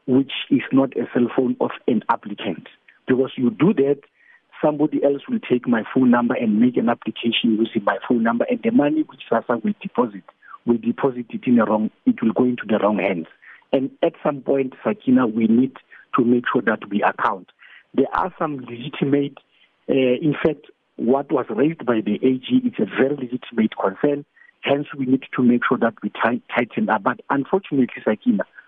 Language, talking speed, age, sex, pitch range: English, 190 wpm, 50-69, male, 120-160 Hz